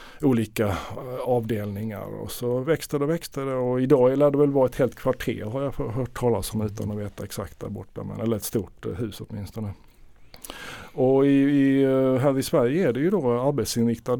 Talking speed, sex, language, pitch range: 195 wpm, male, Swedish, 105-130 Hz